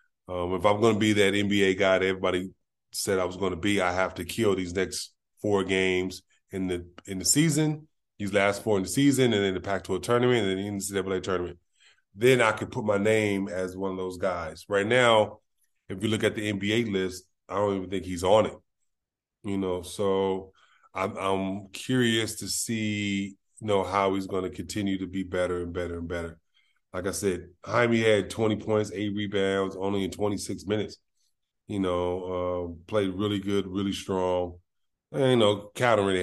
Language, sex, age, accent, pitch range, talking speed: English, male, 20-39, American, 90-105 Hz, 200 wpm